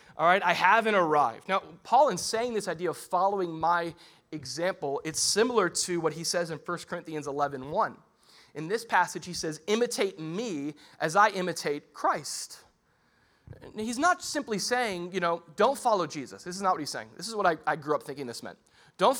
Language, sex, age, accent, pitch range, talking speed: English, male, 30-49, American, 160-220 Hz, 195 wpm